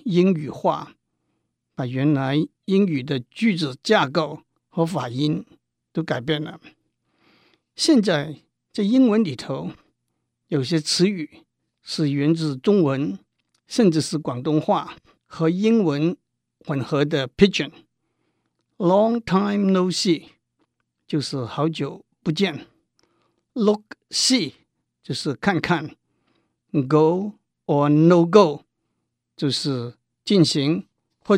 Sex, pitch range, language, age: male, 145-185 Hz, Chinese, 60-79